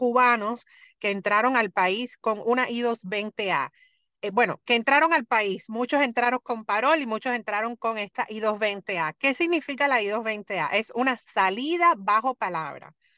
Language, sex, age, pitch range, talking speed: Spanish, female, 30-49, 200-255 Hz, 150 wpm